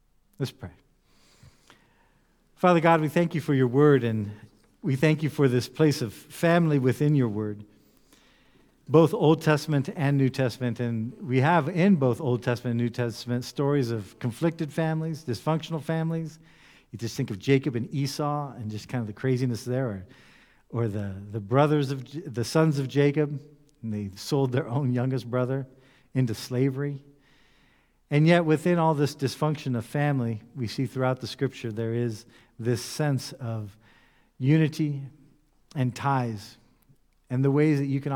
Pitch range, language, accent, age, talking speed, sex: 115-145 Hz, English, American, 50-69, 165 wpm, male